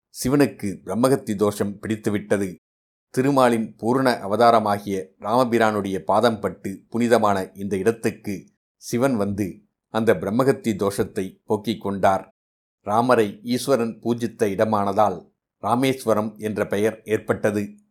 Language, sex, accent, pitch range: Tamil, male, native, 100-115 Hz